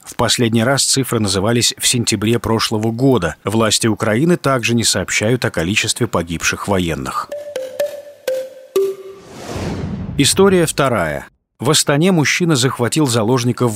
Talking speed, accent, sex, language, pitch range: 110 wpm, native, male, Russian, 110-150 Hz